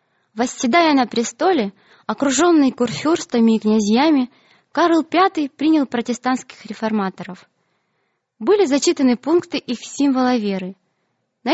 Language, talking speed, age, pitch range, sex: Russian, 100 wpm, 20-39, 215-285 Hz, female